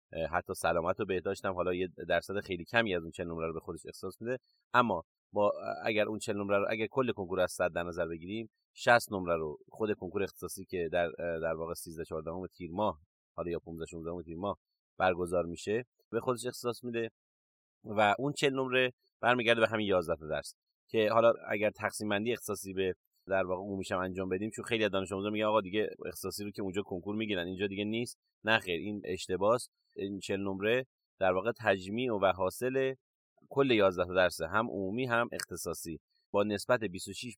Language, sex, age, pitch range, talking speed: Persian, male, 30-49, 95-120 Hz, 195 wpm